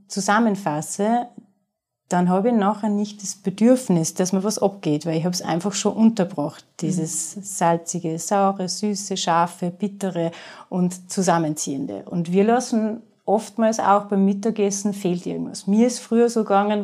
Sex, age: female, 30-49